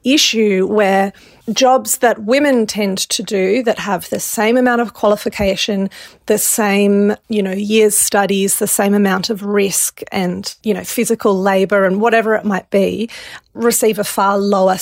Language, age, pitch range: English, 30-49, 195-235 Hz